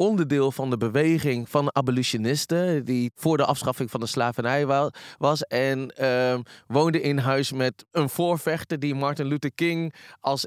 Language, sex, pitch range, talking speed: Dutch, male, 135-175 Hz, 150 wpm